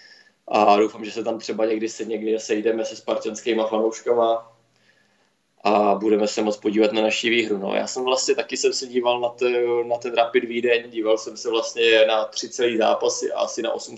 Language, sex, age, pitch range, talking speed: Czech, male, 20-39, 105-115 Hz, 200 wpm